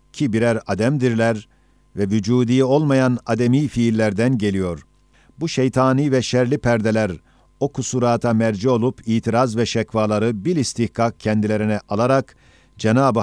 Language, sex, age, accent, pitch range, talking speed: Turkish, male, 50-69, native, 110-130 Hz, 120 wpm